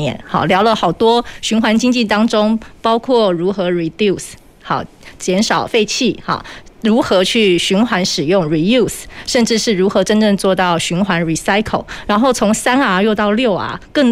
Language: Chinese